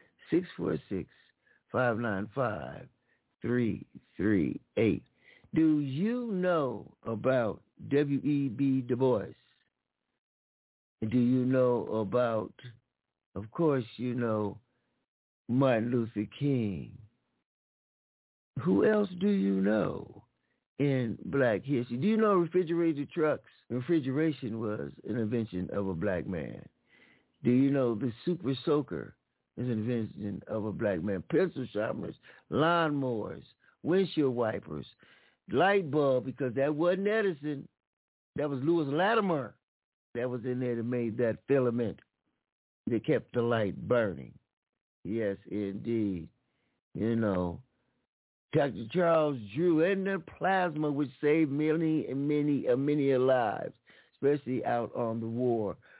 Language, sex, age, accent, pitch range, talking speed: English, male, 60-79, American, 115-150 Hz, 110 wpm